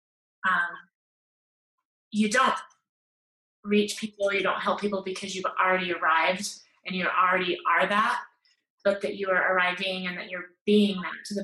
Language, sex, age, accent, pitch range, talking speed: English, female, 20-39, American, 180-205 Hz, 155 wpm